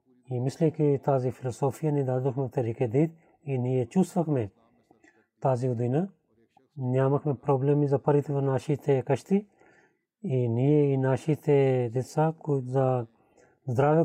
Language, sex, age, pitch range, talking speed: Bulgarian, male, 40-59, 125-145 Hz, 120 wpm